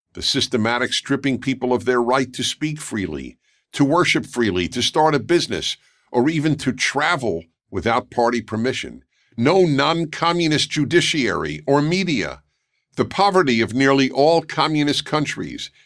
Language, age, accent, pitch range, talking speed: English, 50-69, American, 110-145 Hz, 135 wpm